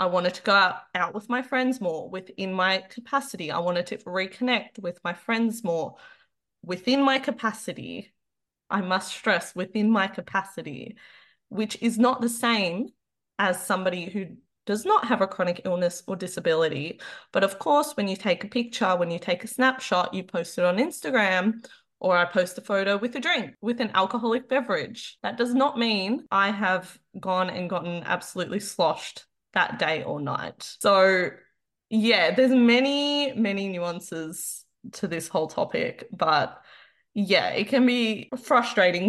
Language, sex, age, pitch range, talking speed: English, female, 20-39, 180-245 Hz, 165 wpm